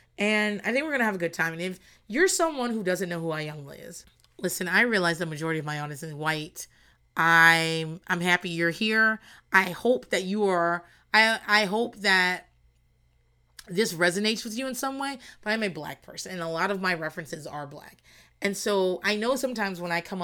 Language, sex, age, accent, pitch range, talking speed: English, female, 30-49, American, 165-230 Hz, 215 wpm